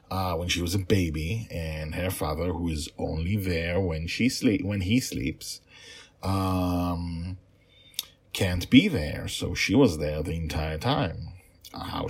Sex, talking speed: male, 160 wpm